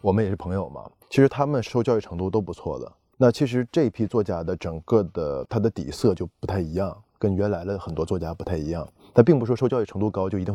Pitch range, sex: 95-125 Hz, male